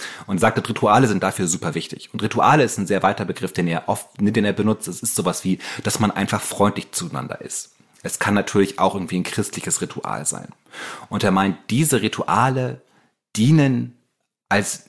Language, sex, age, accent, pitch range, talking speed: German, male, 30-49, German, 95-120 Hz, 190 wpm